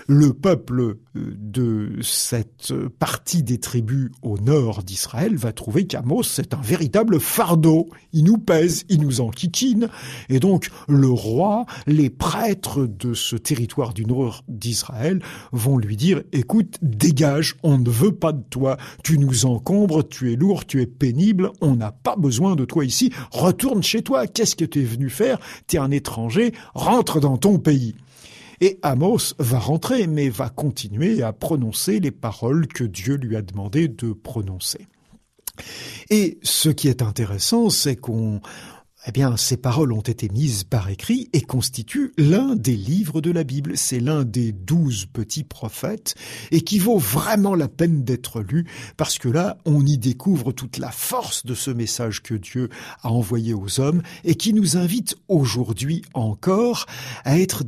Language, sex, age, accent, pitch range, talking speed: French, male, 50-69, French, 120-170 Hz, 165 wpm